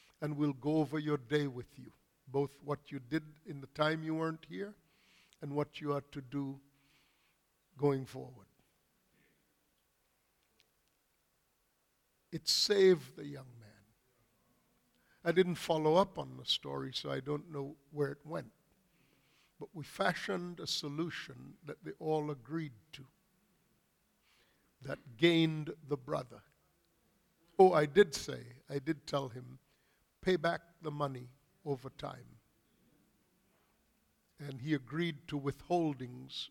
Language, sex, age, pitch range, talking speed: English, male, 50-69, 135-165 Hz, 130 wpm